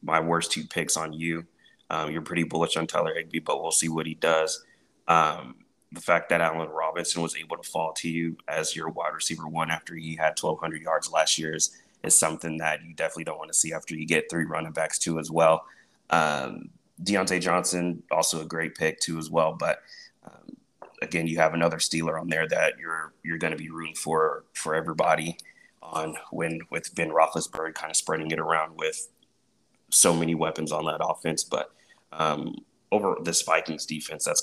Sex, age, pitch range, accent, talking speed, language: male, 20-39, 80-85 Hz, American, 200 wpm, English